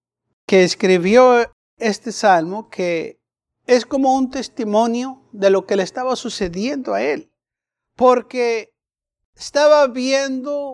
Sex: male